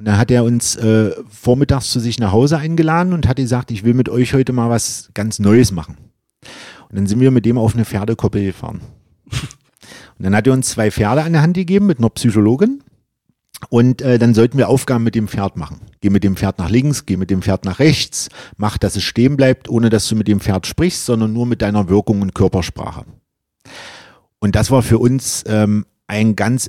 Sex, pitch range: male, 105-130 Hz